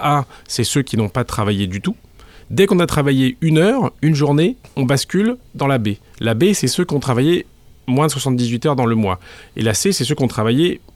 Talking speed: 245 wpm